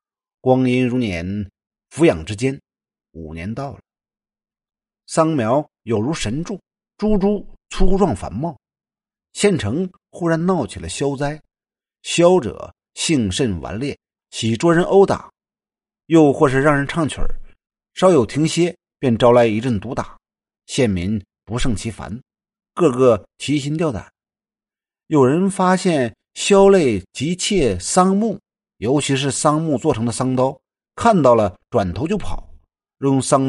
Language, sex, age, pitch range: Chinese, male, 50-69, 105-170 Hz